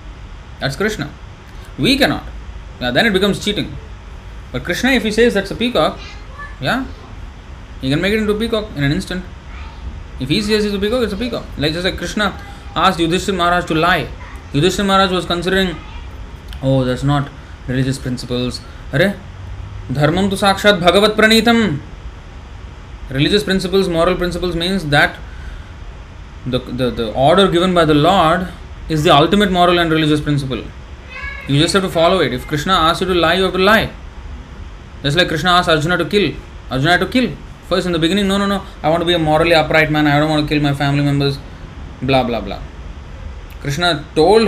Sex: male